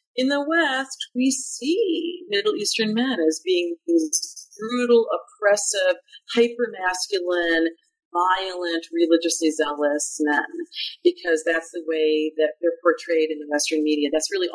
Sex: female